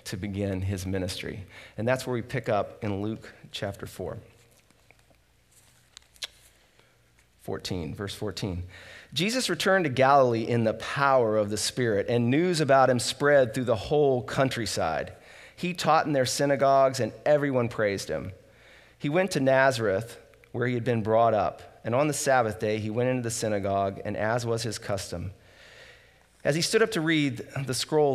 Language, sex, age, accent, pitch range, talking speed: English, male, 40-59, American, 100-135 Hz, 165 wpm